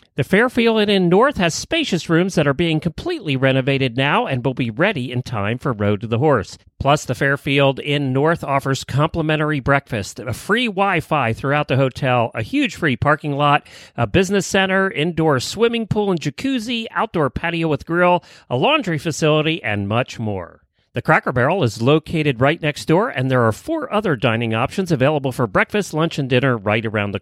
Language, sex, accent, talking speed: English, male, American, 185 wpm